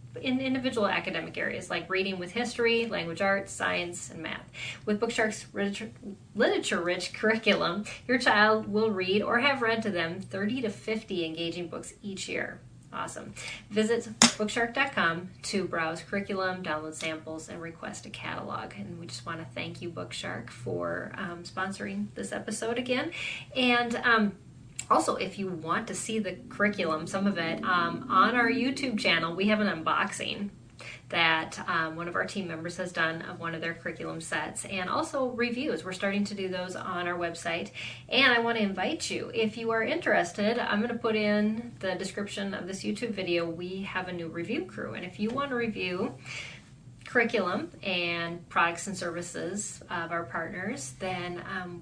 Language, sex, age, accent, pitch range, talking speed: English, female, 30-49, American, 165-220 Hz, 170 wpm